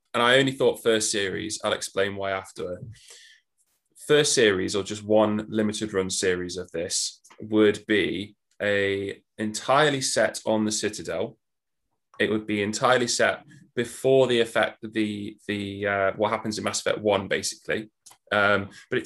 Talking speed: 155 wpm